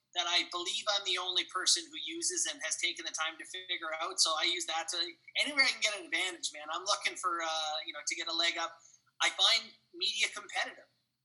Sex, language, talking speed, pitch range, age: male, English, 235 wpm, 155-200 Hz, 30-49